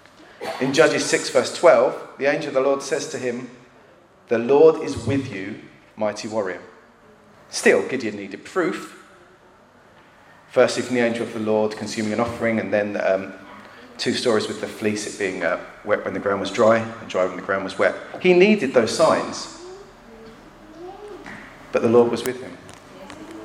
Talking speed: 175 wpm